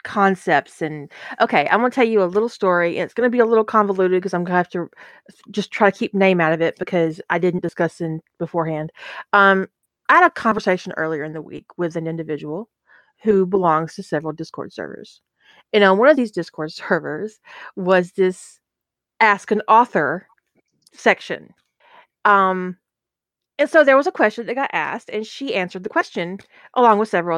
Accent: American